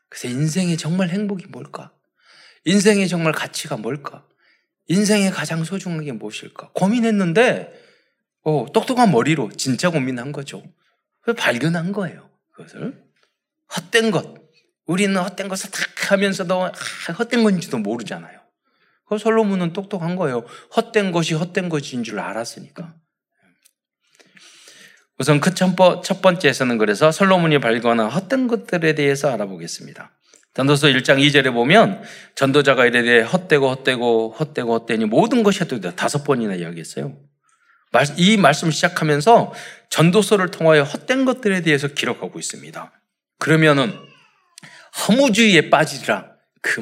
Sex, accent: male, native